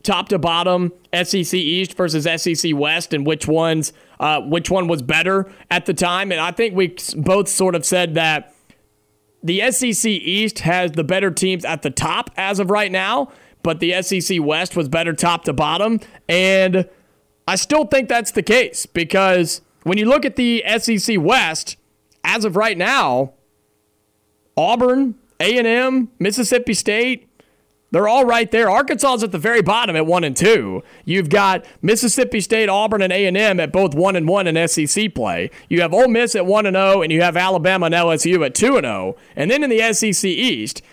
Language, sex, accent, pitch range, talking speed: English, male, American, 170-220 Hz, 190 wpm